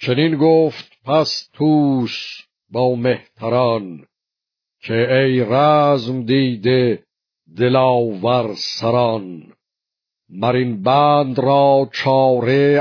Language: Persian